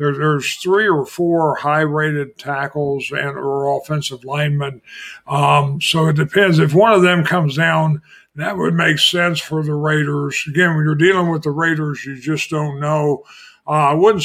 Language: English